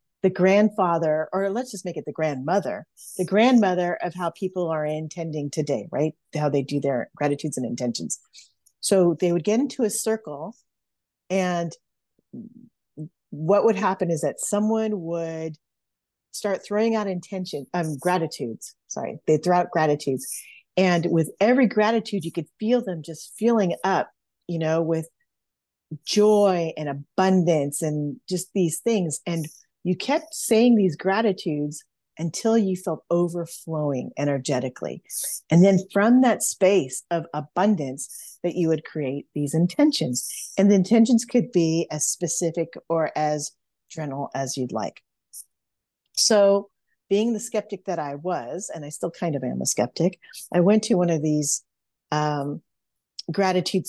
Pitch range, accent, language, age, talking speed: 155-200 Hz, American, English, 40-59, 145 wpm